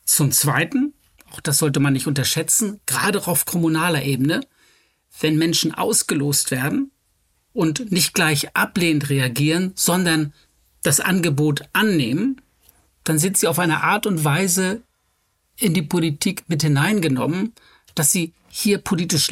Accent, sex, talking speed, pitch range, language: German, male, 135 wpm, 145-175 Hz, German